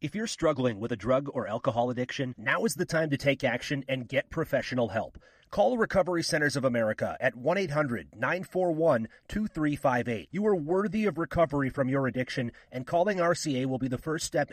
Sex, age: male, 30-49